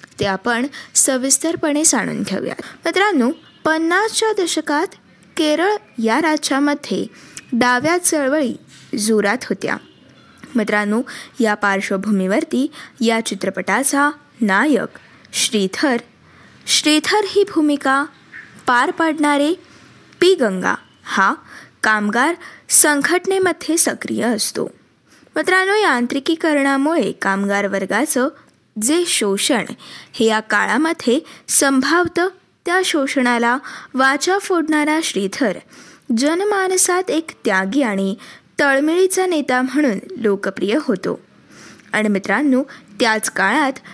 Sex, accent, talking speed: female, native, 85 wpm